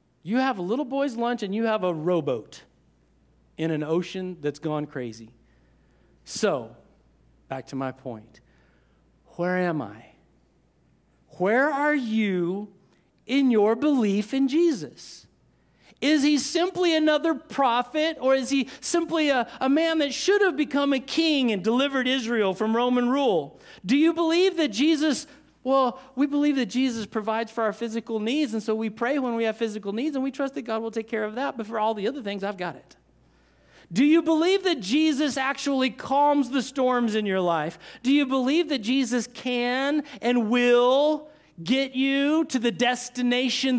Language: English